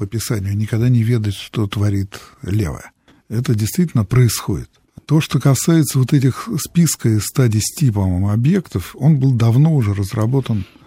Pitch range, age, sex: 105-135 Hz, 60-79, male